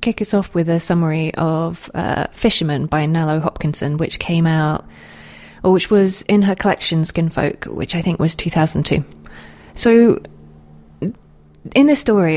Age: 20-39